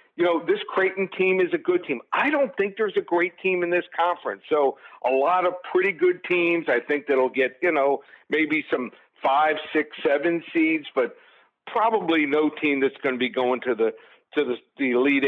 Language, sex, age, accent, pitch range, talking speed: English, male, 50-69, American, 135-180 Hz, 210 wpm